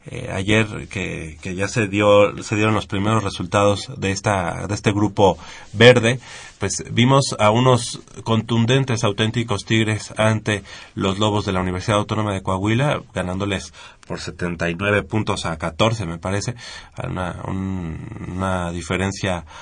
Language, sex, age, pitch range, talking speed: Spanish, male, 30-49, 95-115 Hz, 140 wpm